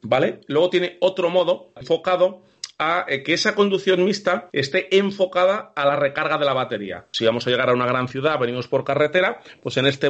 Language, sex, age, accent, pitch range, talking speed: Spanish, male, 40-59, Spanish, 125-155 Hz, 195 wpm